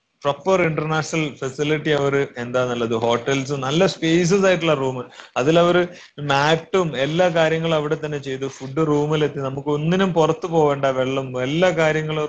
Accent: native